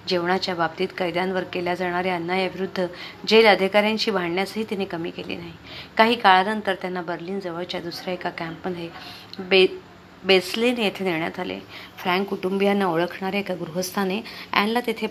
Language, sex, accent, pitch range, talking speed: Marathi, female, native, 170-195 Hz, 120 wpm